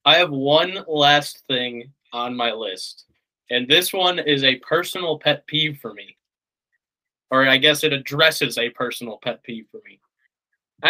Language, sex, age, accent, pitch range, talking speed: English, male, 20-39, American, 140-195 Hz, 165 wpm